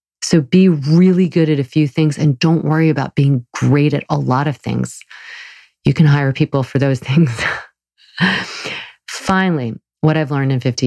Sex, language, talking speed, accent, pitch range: female, English, 175 wpm, American, 125-170 Hz